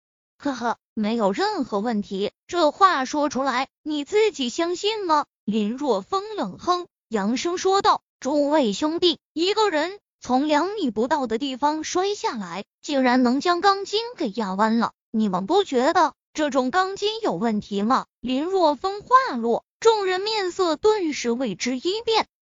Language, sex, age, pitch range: Chinese, female, 20-39, 245-365 Hz